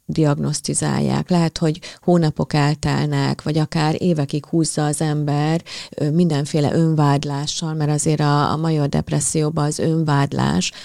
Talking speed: 115 wpm